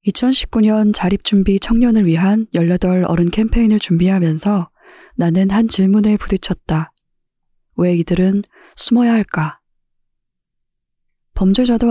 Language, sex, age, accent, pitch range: Korean, female, 20-39, native, 170-210 Hz